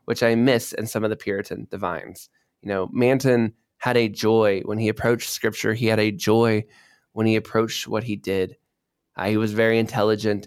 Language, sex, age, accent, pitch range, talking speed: English, male, 20-39, American, 105-125 Hz, 195 wpm